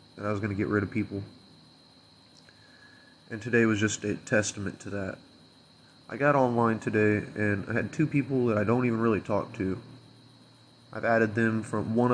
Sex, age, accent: male, 20-39, American